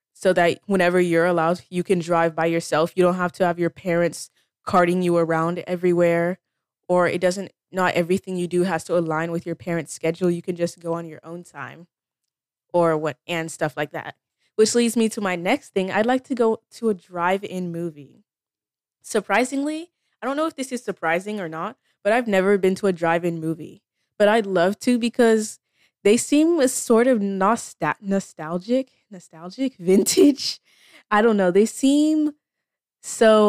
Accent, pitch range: American, 175-220 Hz